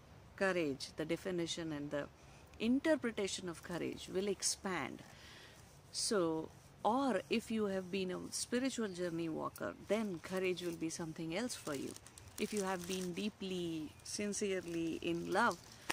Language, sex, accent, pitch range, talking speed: English, female, Indian, 175-250 Hz, 135 wpm